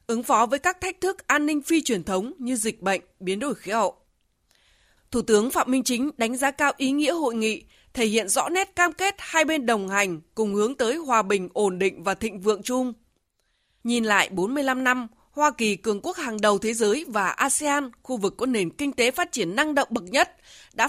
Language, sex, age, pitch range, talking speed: Vietnamese, female, 20-39, 215-300 Hz, 225 wpm